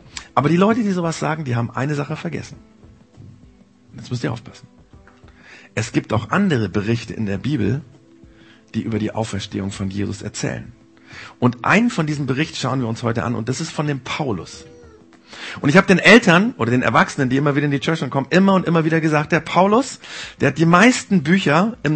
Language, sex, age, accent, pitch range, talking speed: German, male, 40-59, German, 115-160 Hz, 200 wpm